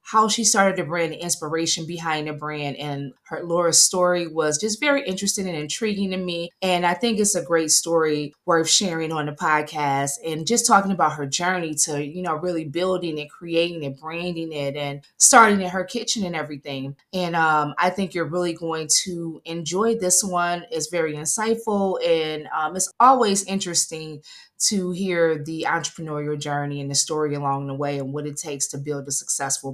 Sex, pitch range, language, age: female, 150-185 Hz, English, 20-39